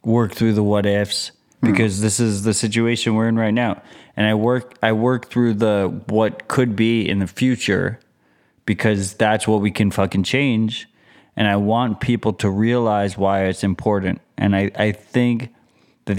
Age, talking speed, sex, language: 20-39, 180 wpm, male, English